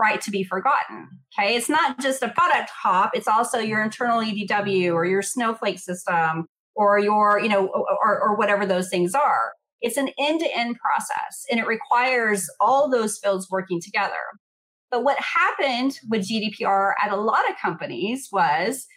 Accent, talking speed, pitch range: American, 170 wpm, 195-250 Hz